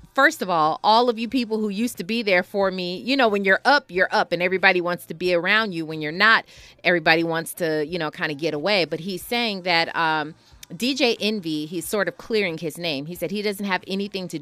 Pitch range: 165-215 Hz